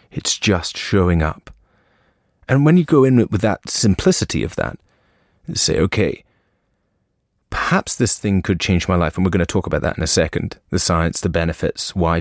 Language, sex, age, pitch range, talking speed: English, male, 30-49, 95-130 Hz, 185 wpm